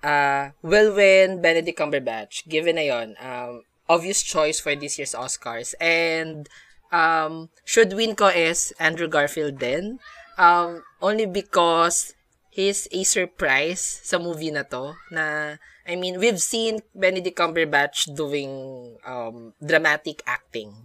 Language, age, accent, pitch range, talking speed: Filipino, 20-39, native, 140-175 Hz, 125 wpm